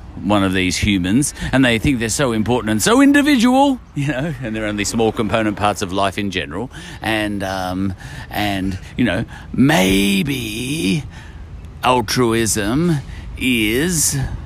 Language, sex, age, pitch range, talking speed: English, male, 40-59, 85-125 Hz, 135 wpm